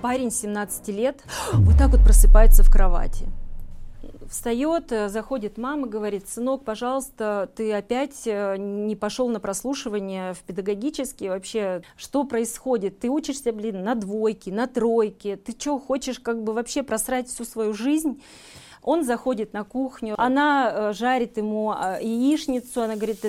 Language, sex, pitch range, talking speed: Russian, female, 200-250 Hz, 135 wpm